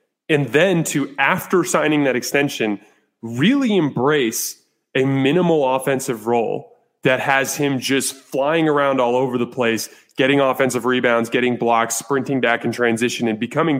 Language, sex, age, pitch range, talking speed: English, male, 20-39, 115-145 Hz, 150 wpm